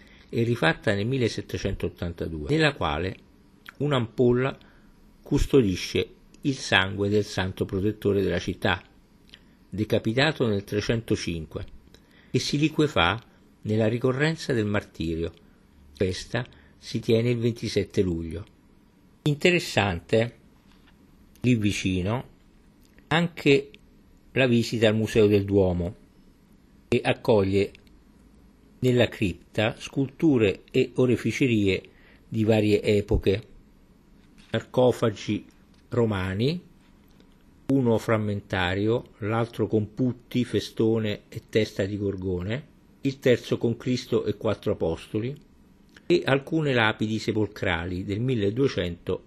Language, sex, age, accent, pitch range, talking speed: Italian, male, 50-69, native, 100-120 Hz, 95 wpm